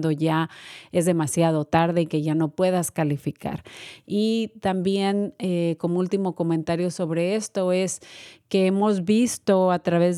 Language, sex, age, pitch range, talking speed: Spanish, female, 30-49, 160-180 Hz, 140 wpm